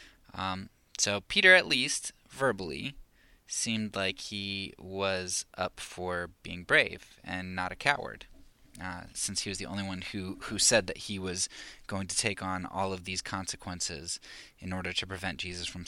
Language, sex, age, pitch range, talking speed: English, male, 20-39, 95-115 Hz, 170 wpm